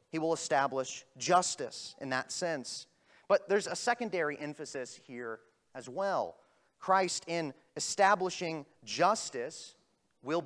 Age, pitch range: 30-49, 145-190 Hz